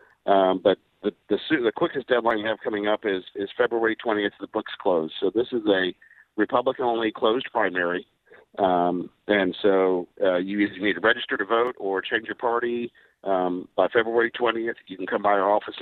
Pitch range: 90-110 Hz